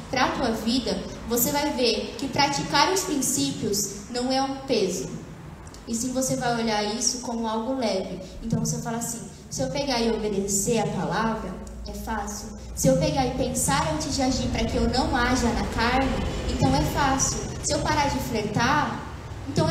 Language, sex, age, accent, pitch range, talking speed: Portuguese, female, 10-29, Brazilian, 200-265 Hz, 185 wpm